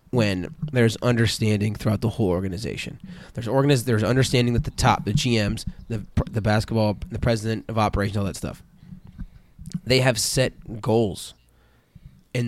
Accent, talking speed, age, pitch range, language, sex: American, 150 wpm, 20-39, 105-130 Hz, English, male